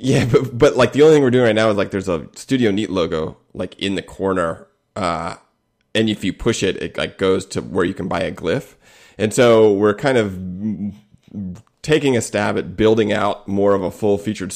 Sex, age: male, 30-49